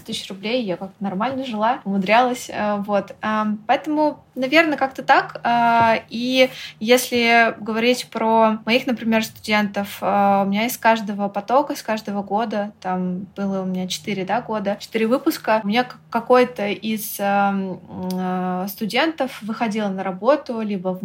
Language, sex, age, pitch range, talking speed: Russian, female, 20-39, 200-230 Hz, 135 wpm